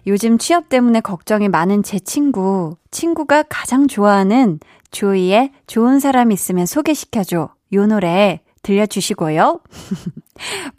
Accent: native